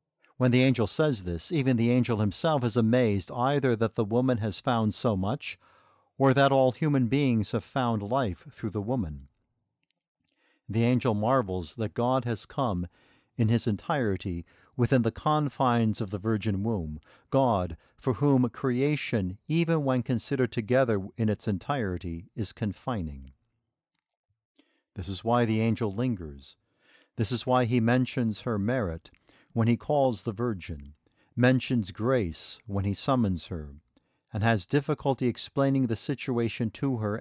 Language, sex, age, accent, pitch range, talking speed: English, male, 50-69, American, 100-130 Hz, 150 wpm